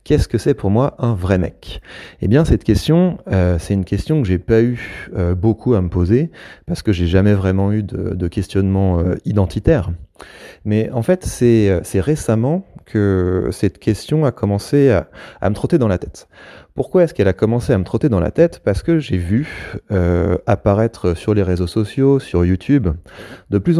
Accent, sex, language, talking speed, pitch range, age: French, male, French, 200 wpm, 95-125 Hz, 30-49